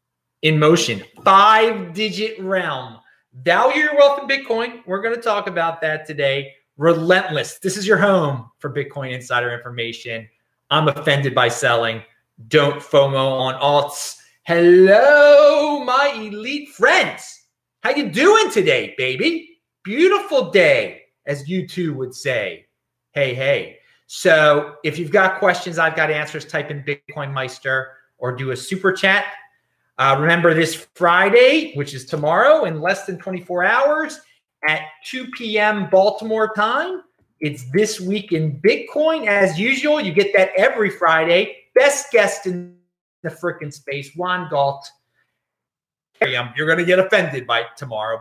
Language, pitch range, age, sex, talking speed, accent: English, 140-210 Hz, 30-49, male, 140 wpm, American